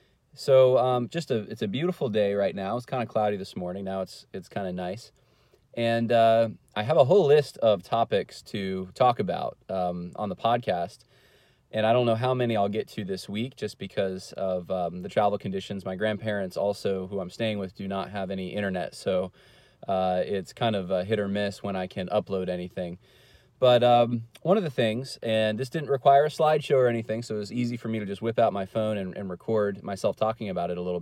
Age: 30-49